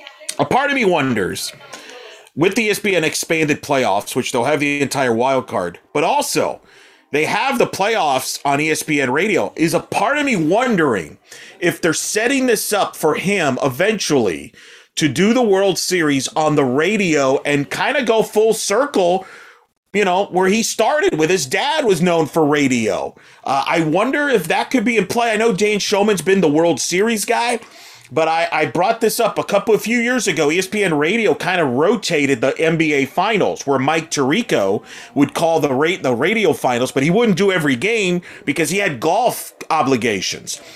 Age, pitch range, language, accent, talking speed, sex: 40-59, 150-215 Hz, English, American, 185 wpm, male